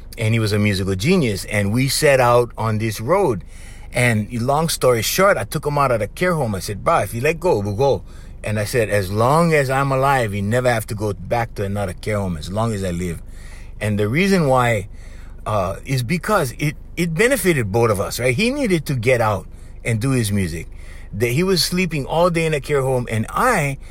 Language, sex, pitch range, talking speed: English, male, 105-165 Hz, 230 wpm